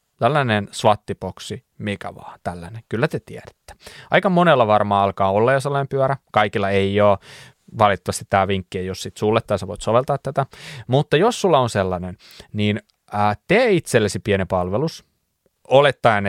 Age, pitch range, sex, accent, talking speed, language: 20-39, 100-135 Hz, male, native, 155 wpm, Finnish